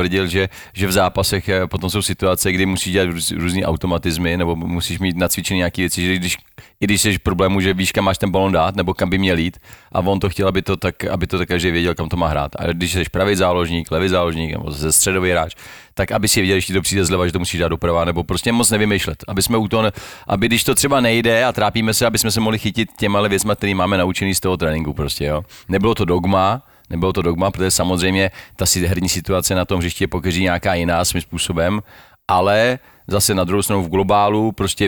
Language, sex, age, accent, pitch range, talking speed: Czech, male, 40-59, native, 90-105 Hz, 230 wpm